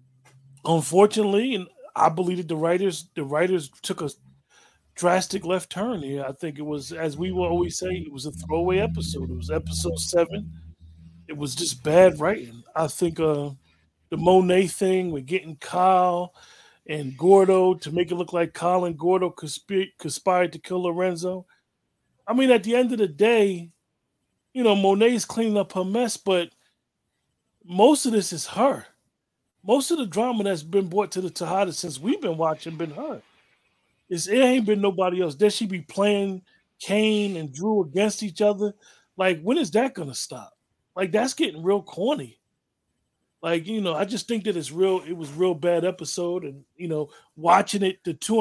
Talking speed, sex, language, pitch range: 185 wpm, male, English, 160-200 Hz